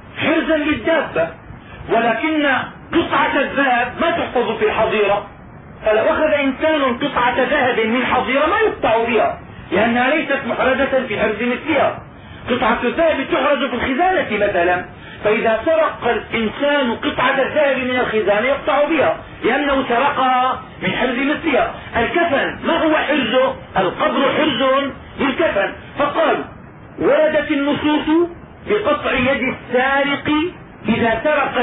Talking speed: 115 wpm